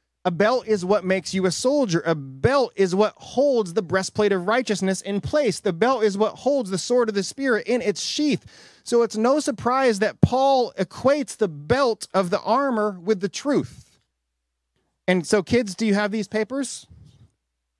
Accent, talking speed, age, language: American, 190 wpm, 30-49, English